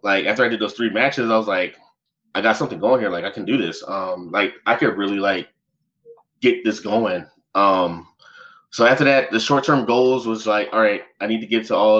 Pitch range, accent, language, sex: 100-130 Hz, American, English, male